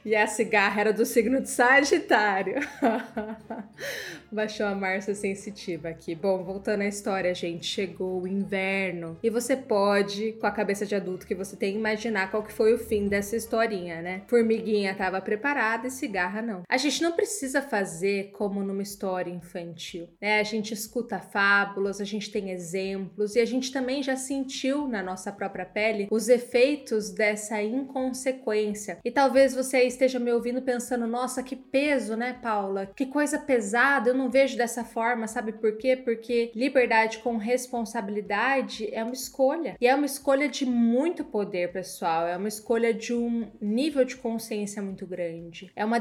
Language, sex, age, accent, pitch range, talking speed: Portuguese, female, 20-39, Brazilian, 200-245 Hz, 170 wpm